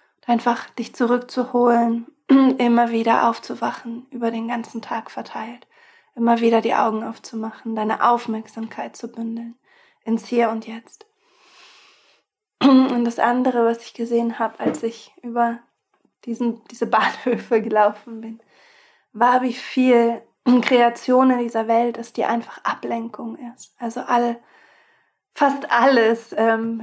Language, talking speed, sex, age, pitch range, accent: German, 120 wpm, female, 20-39, 225-245 Hz, German